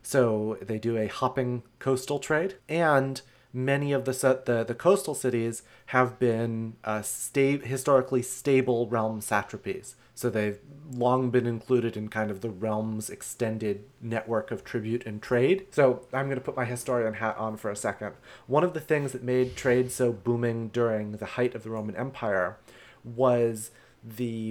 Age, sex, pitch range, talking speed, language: 30-49, male, 115-135 Hz, 170 wpm, English